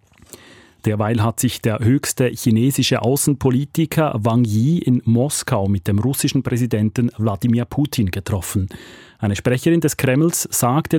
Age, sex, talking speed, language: 30-49, male, 125 wpm, German